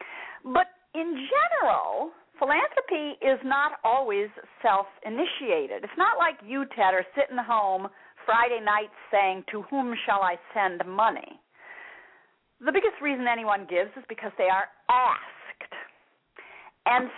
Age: 50-69